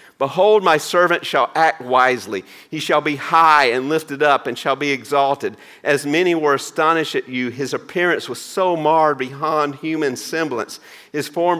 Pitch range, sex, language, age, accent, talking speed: 140-180 Hz, male, English, 50-69, American, 170 wpm